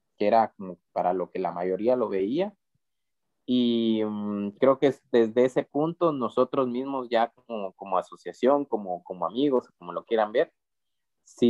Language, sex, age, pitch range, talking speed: Spanish, male, 30-49, 110-140 Hz, 160 wpm